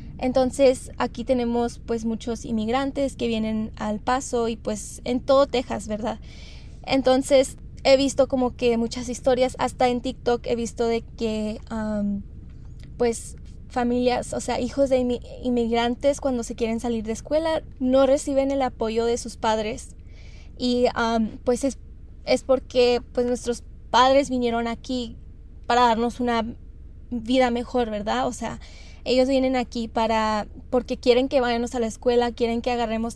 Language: English